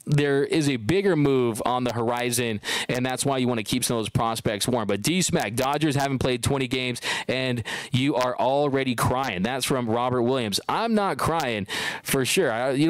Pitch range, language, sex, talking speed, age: 125-145 Hz, English, male, 200 wpm, 20-39